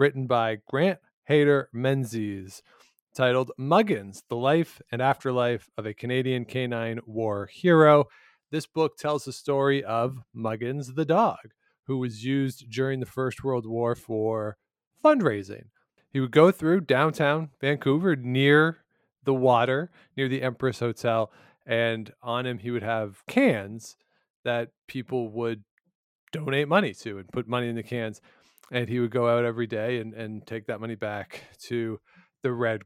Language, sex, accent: English, male, American